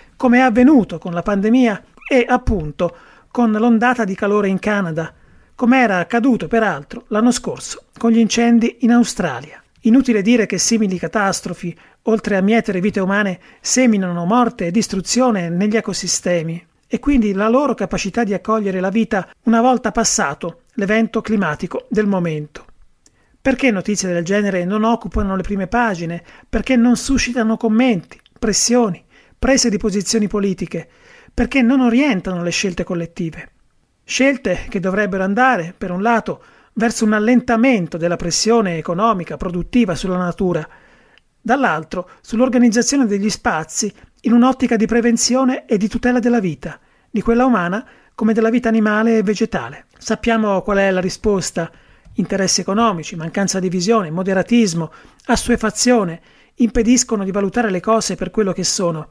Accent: native